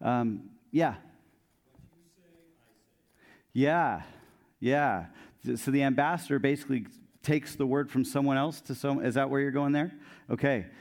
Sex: male